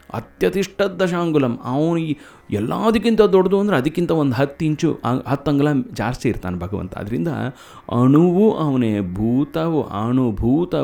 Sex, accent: male, native